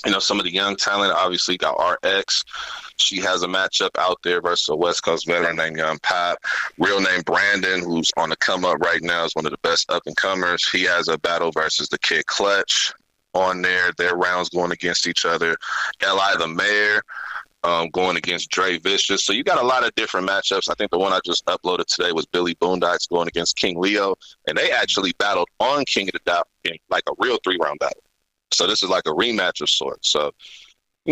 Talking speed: 215 wpm